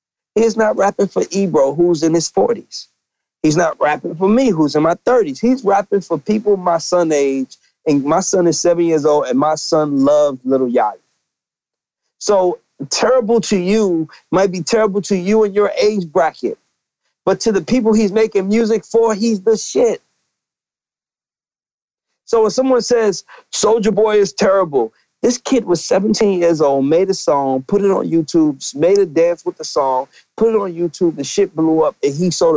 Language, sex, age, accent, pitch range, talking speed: English, male, 40-59, American, 150-215 Hz, 185 wpm